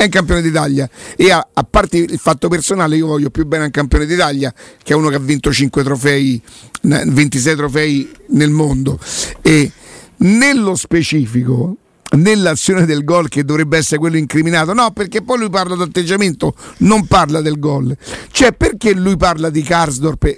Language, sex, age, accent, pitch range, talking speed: Italian, male, 50-69, native, 150-195 Hz, 170 wpm